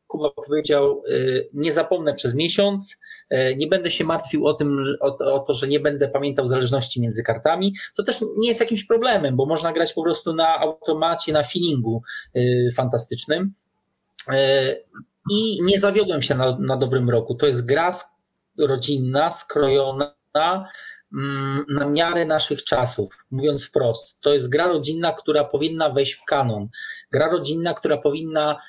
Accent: native